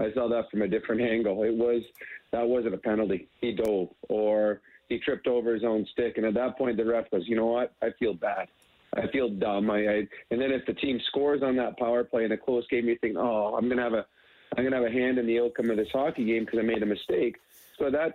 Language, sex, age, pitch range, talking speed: English, male, 40-59, 115-130 Hz, 270 wpm